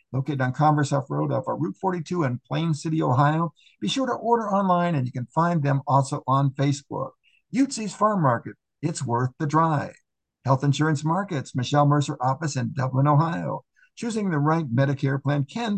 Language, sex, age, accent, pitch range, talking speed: English, male, 60-79, American, 135-175 Hz, 180 wpm